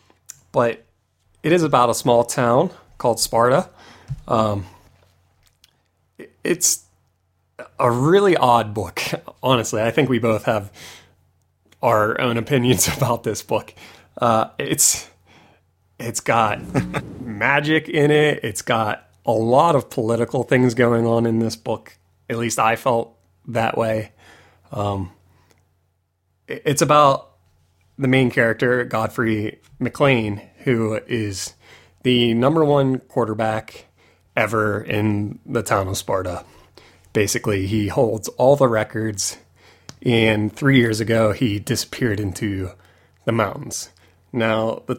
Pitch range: 100-125 Hz